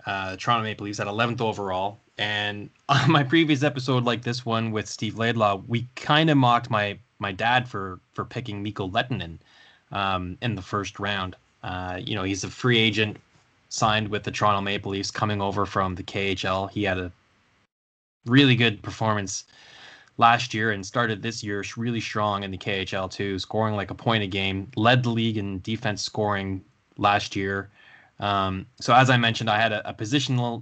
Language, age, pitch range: English, 10-29, 95-115 Hz